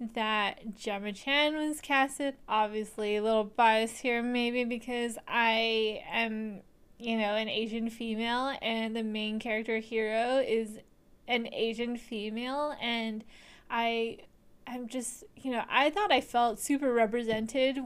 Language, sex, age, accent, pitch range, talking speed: English, female, 10-29, American, 215-245 Hz, 135 wpm